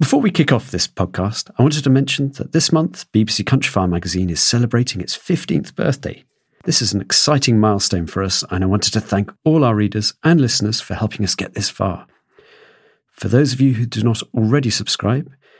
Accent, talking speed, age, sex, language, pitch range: British, 205 wpm, 40-59, male, English, 95-130 Hz